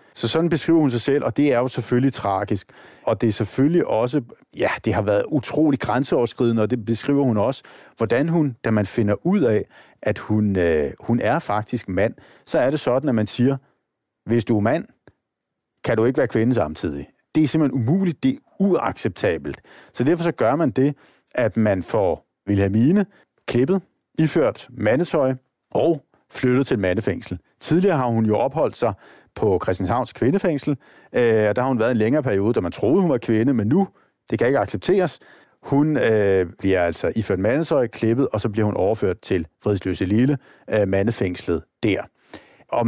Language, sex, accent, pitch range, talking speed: Danish, male, native, 105-145 Hz, 185 wpm